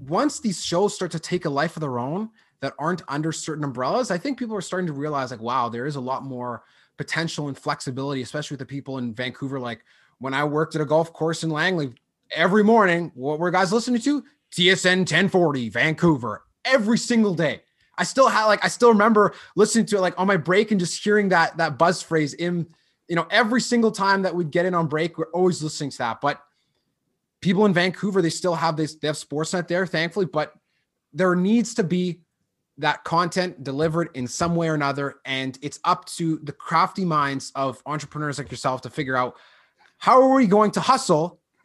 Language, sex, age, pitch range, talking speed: English, male, 20-39, 145-190 Hz, 210 wpm